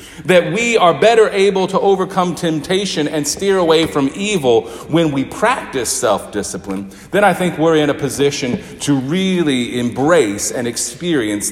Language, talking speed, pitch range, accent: English, 150 wpm, 115-180 Hz, American